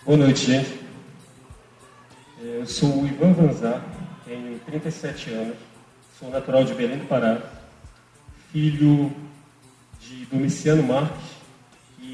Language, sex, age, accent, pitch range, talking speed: Portuguese, male, 40-59, Brazilian, 130-160 Hz, 110 wpm